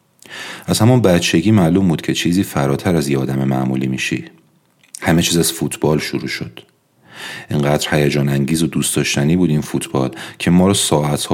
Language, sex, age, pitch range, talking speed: Persian, male, 30-49, 70-85 Hz, 165 wpm